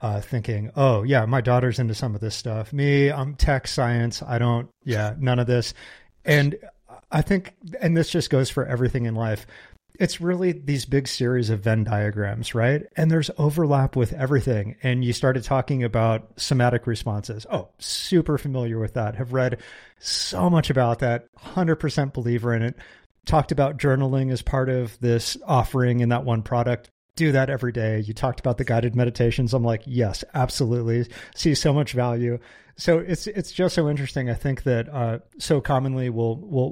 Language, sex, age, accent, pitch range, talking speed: English, male, 30-49, American, 115-140 Hz, 180 wpm